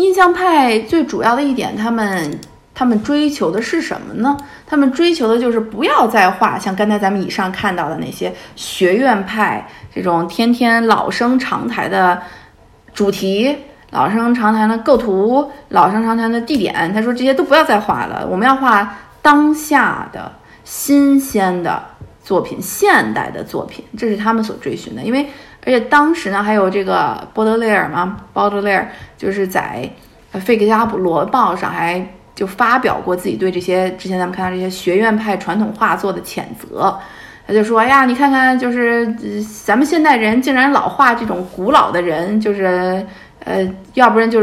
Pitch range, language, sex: 195-255 Hz, Chinese, female